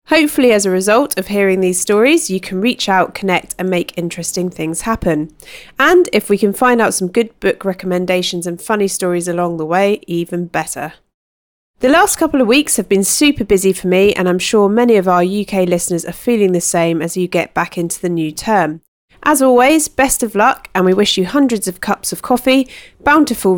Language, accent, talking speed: English, British, 210 wpm